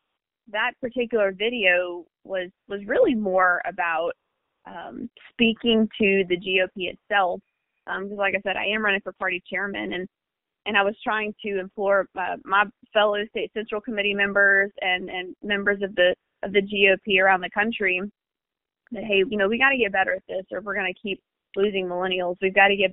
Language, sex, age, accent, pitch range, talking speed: English, female, 20-39, American, 185-210 Hz, 190 wpm